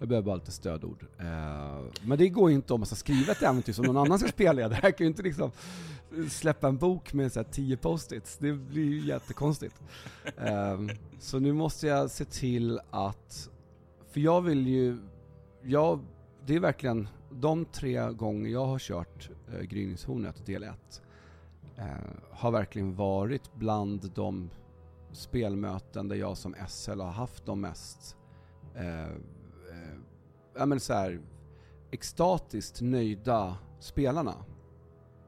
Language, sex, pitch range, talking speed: Swedish, male, 95-135 Hz, 135 wpm